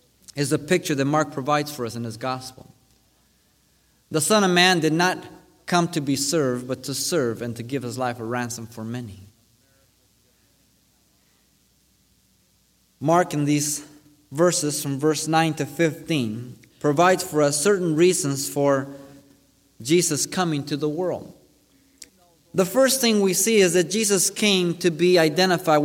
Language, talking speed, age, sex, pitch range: English, 150 wpm, 30-49, male, 135-180 Hz